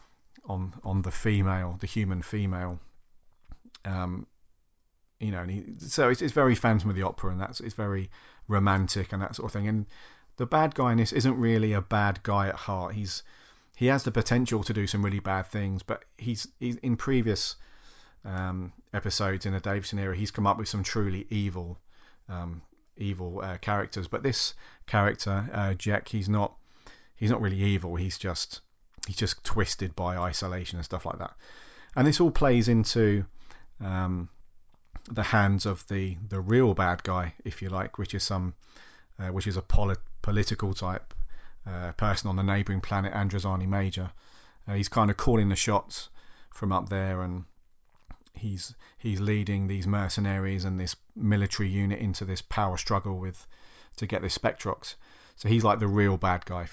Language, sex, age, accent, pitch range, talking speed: English, male, 40-59, British, 95-105 Hz, 180 wpm